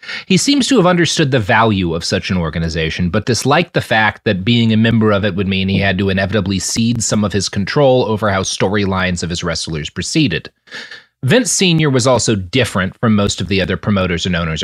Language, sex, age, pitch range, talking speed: English, male, 30-49, 105-150 Hz, 215 wpm